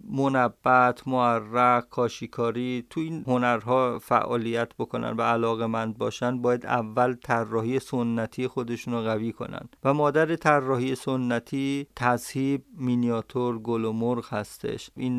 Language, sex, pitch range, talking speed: Persian, male, 115-130 Hz, 120 wpm